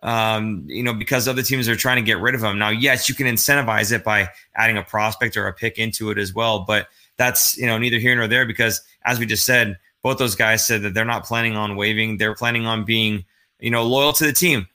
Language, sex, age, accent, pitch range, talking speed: English, male, 20-39, American, 110-130 Hz, 255 wpm